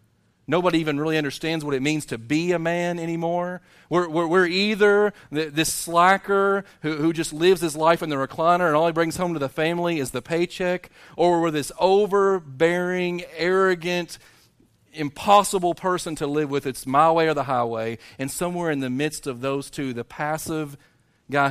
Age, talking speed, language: 40-59, 185 wpm, English